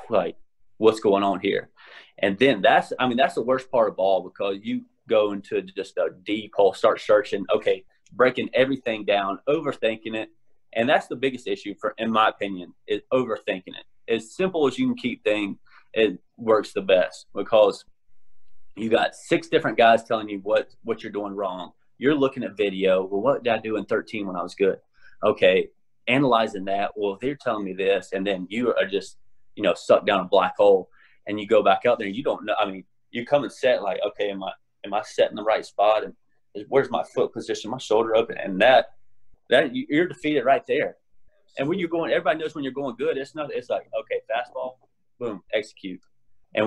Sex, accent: male, American